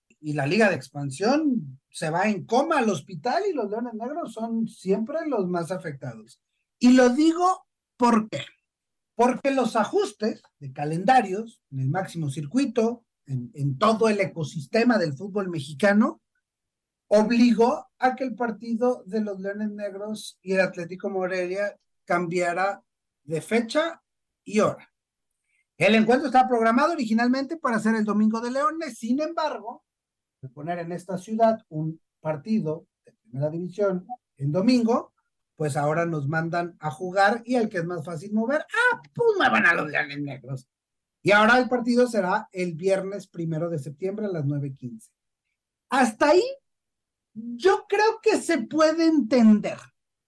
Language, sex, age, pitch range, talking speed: Spanish, male, 40-59, 170-255 Hz, 150 wpm